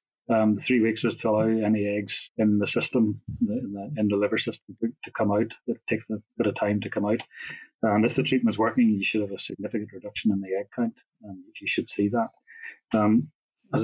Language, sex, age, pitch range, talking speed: English, male, 30-49, 105-120 Hz, 230 wpm